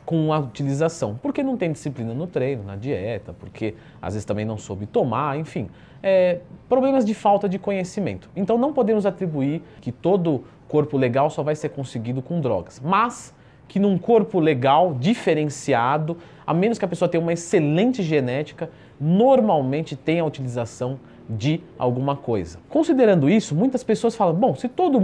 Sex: male